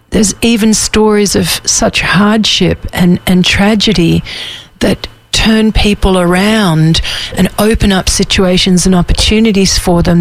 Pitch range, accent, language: 170-195 Hz, Australian, English